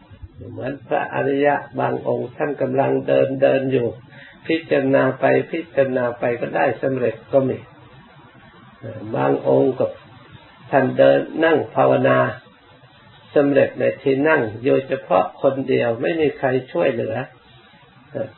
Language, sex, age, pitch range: Thai, male, 60-79, 125-140 Hz